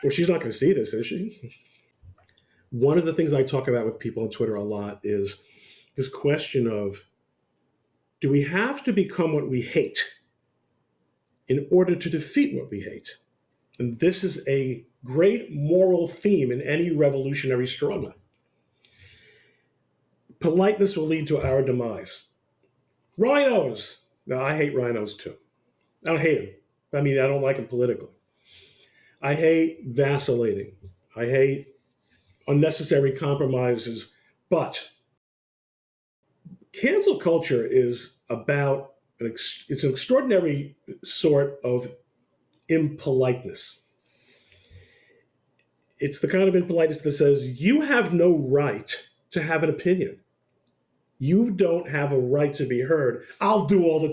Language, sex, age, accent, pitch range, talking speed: English, male, 40-59, American, 120-165 Hz, 135 wpm